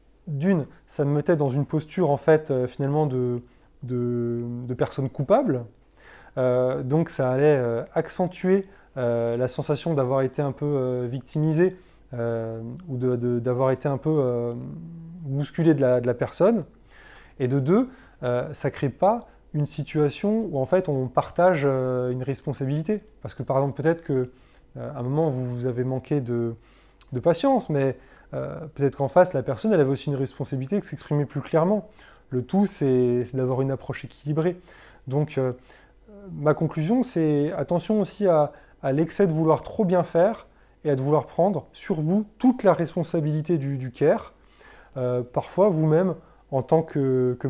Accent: French